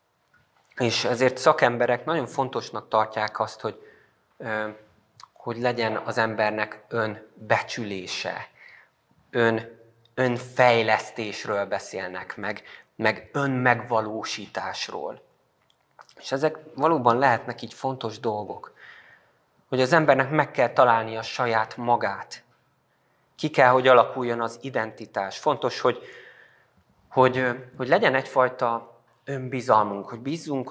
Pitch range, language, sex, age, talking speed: 115-135 Hz, Hungarian, male, 20-39, 100 wpm